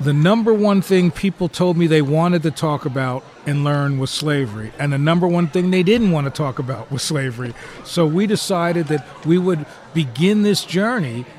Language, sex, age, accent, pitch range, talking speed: English, male, 40-59, American, 150-180 Hz, 200 wpm